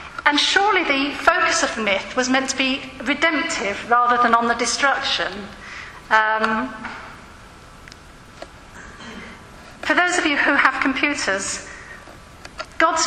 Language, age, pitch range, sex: English, 40-59, 245-295 Hz, female